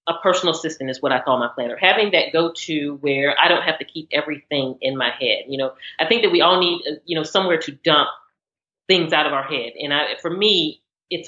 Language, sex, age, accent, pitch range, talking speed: English, female, 30-49, American, 130-180 Hz, 245 wpm